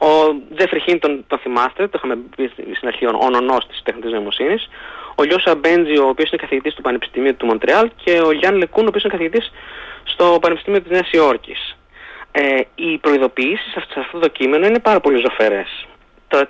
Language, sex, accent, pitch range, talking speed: Greek, male, native, 130-190 Hz, 195 wpm